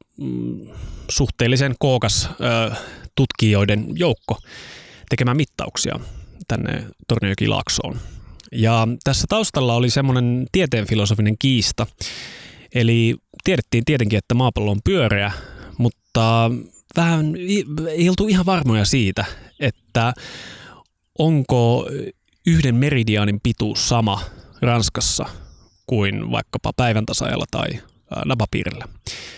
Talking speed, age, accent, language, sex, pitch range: 90 wpm, 20-39, native, Finnish, male, 105-130 Hz